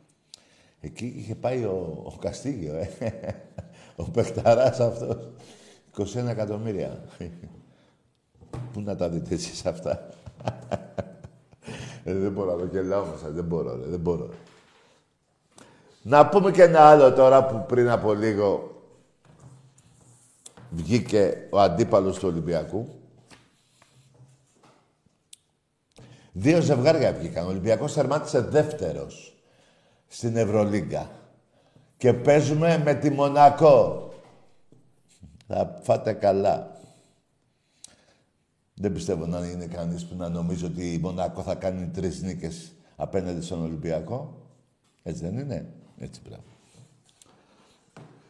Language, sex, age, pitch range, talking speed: Greek, male, 60-79, 95-140 Hz, 100 wpm